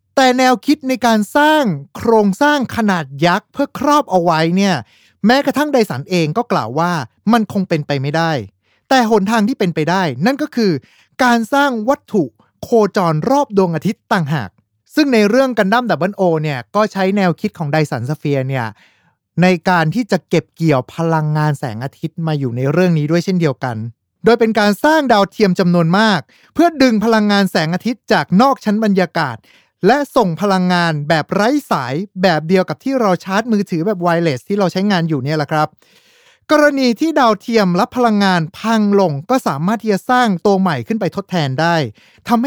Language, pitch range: Thai, 160-230 Hz